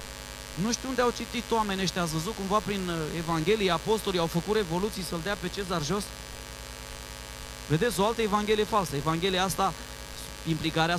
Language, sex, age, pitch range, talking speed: Romanian, male, 30-49, 160-200 Hz, 160 wpm